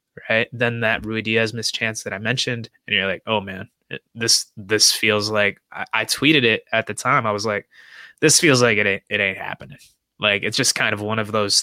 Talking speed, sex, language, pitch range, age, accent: 230 wpm, male, English, 110-125 Hz, 20-39, American